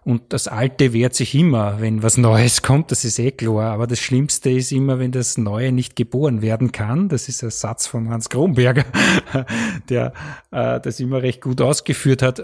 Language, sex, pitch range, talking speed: German, male, 120-145 Hz, 200 wpm